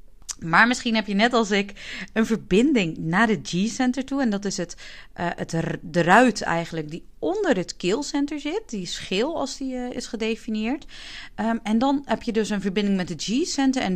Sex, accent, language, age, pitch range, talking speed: female, Dutch, Dutch, 30-49, 175-235 Hz, 205 wpm